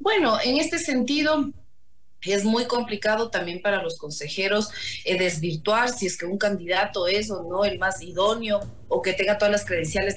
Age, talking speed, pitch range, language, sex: 30-49, 175 wpm, 180-225 Hz, Spanish, female